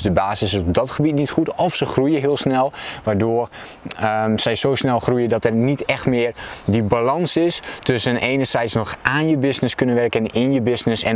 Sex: male